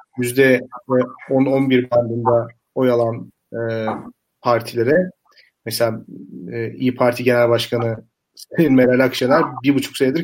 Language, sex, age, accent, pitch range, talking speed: Turkish, male, 40-59, native, 125-165 Hz, 100 wpm